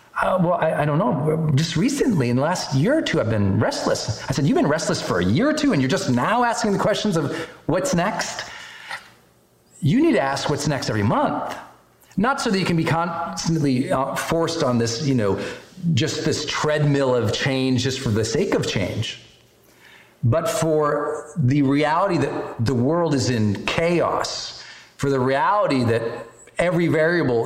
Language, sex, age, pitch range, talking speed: English, male, 40-59, 125-190 Hz, 185 wpm